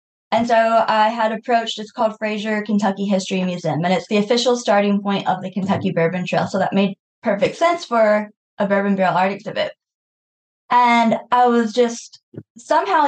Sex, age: female, 20-39